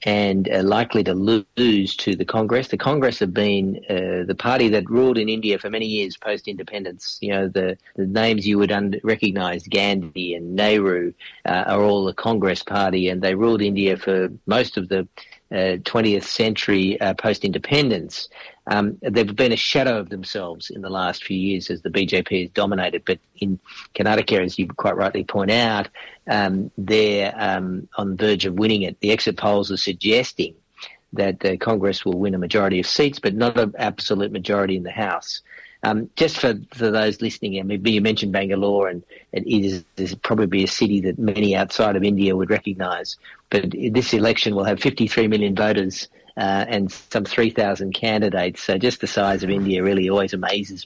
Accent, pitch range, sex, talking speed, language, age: Australian, 95-110 Hz, male, 185 wpm, English, 40-59